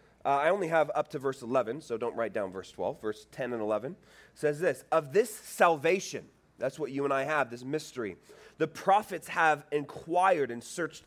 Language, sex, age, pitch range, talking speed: English, male, 30-49, 160-215 Hz, 200 wpm